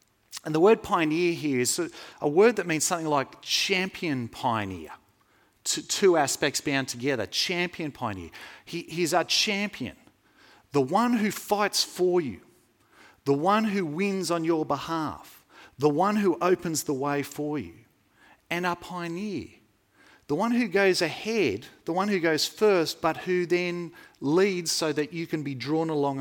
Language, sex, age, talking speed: English, male, 40-59, 155 wpm